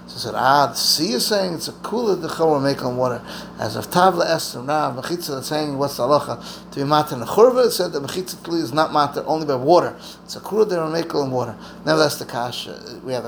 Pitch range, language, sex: 145-185 Hz, English, male